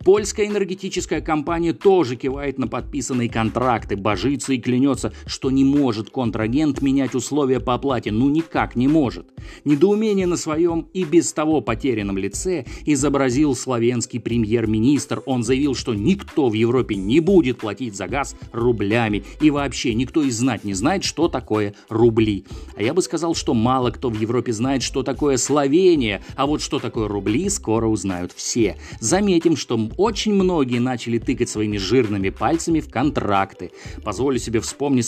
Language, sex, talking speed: Russian, male, 155 wpm